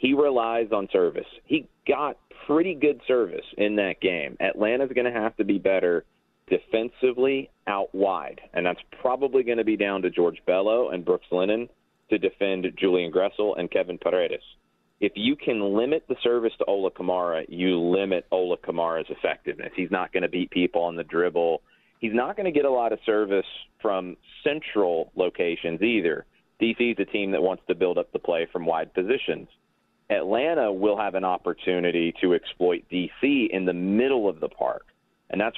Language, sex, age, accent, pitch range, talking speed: English, male, 30-49, American, 90-135 Hz, 180 wpm